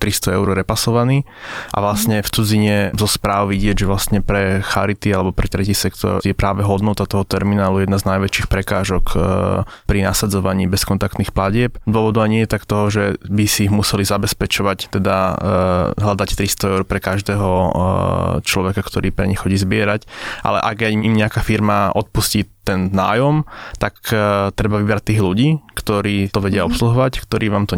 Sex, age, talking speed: male, 20-39, 160 wpm